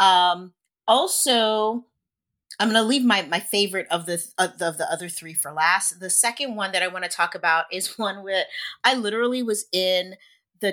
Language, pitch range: English, 180-230 Hz